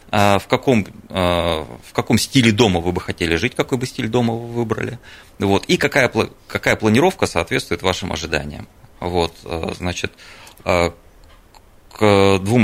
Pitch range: 90-120 Hz